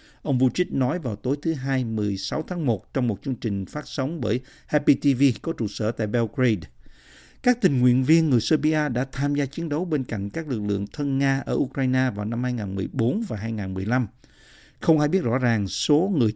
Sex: male